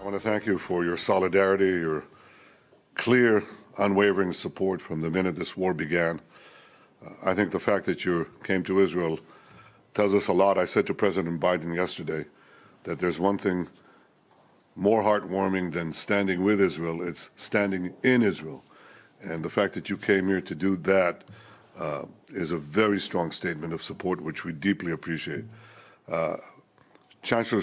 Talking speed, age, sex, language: 165 wpm, 60-79, male, English